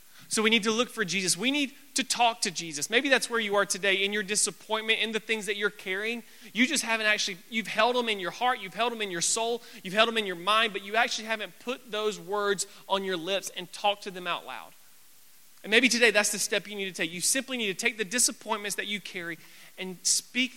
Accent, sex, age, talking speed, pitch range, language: American, male, 30-49, 255 wpm, 200-240 Hz, English